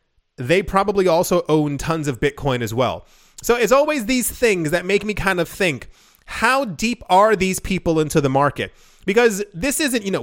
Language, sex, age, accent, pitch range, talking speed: English, male, 30-49, American, 150-200 Hz, 195 wpm